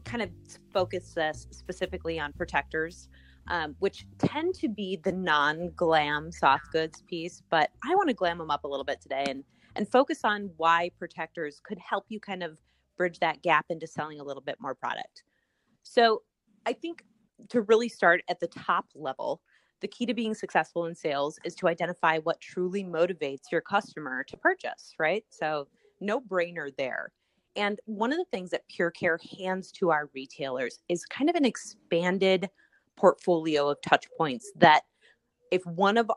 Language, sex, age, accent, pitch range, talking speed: English, female, 30-49, American, 160-210 Hz, 175 wpm